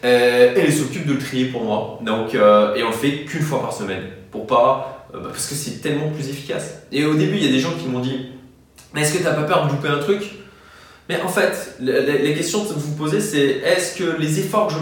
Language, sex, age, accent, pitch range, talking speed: French, male, 20-39, French, 115-150 Hz, 265 wpm